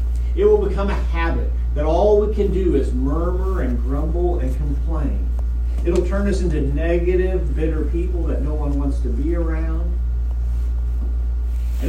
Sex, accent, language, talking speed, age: male, American, English, 160 wpm, 40-59